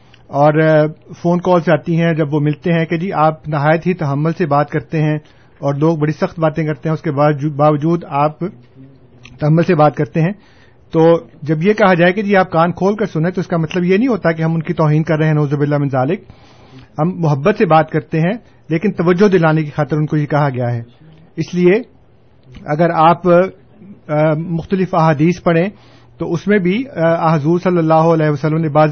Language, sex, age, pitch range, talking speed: Urdu, male, 50-69, 145-175 Hz, 210 wpm